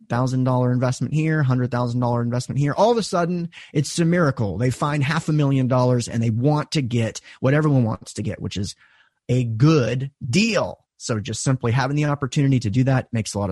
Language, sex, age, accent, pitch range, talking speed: English, male, 30-49, American, 120-145 Hz, 200 wpm